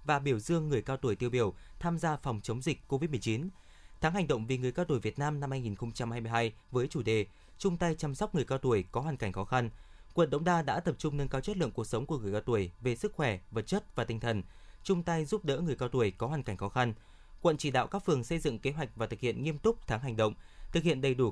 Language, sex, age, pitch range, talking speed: Vietnamese, male, 20-39, 115-155 Hz, 290 wpm